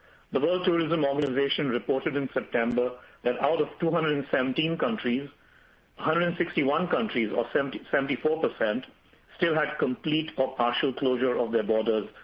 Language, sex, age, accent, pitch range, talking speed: English, male, 50-69, Indian, 115-165 Hz, 125 wpm